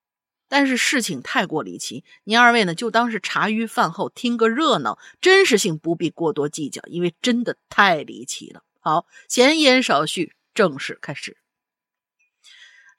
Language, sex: Chinese, female